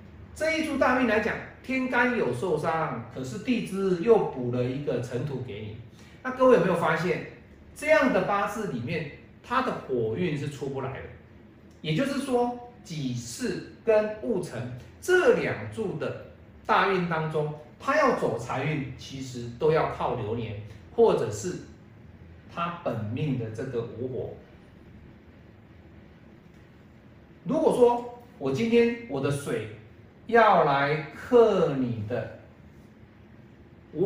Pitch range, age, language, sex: 115-190 Hz, 40-59, Chinese, male